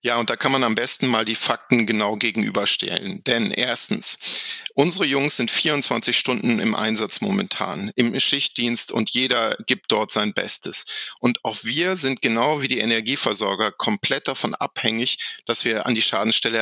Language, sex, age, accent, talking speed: German, male, 50-69, German, 165 wpm